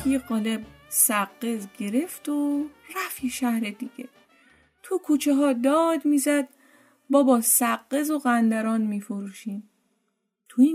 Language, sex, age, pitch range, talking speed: Persian, female, 30-49, 225-285 Hz, 110 wpm